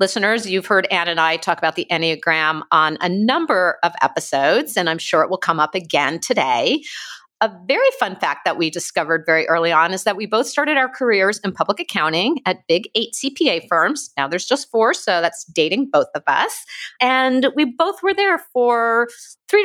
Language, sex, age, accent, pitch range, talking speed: English, female, 50-69, American, 170-255 Hz, 200 wpm